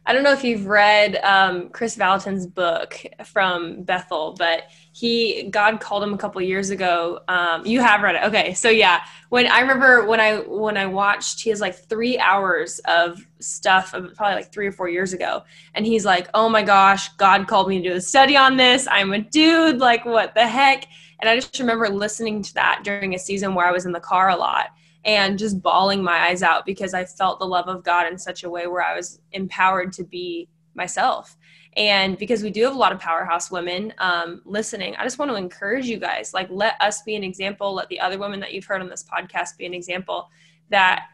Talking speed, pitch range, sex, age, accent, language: 225 wpm, 180-215 Hz, female, 20-39, American, English